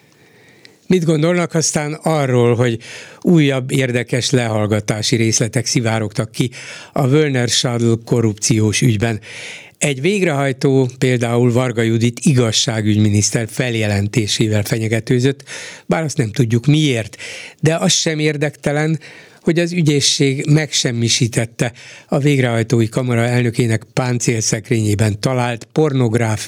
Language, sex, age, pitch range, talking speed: Hungarian, male, 60-79, 115-150 Hz, 95 wpm